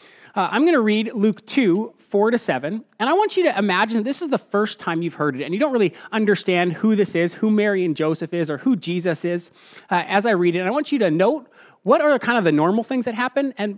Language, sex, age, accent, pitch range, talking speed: English, male, 30-49, American, 160-225 Hz, 270 wpm